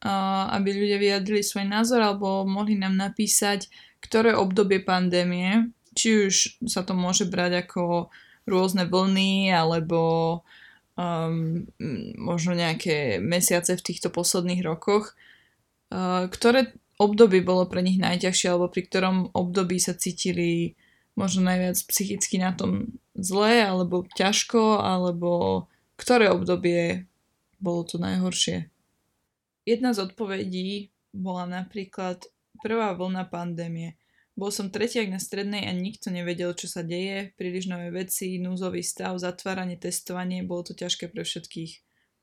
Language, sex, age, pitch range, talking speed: Slovak, female, 20-39, 180-200 Hz, 125 wpm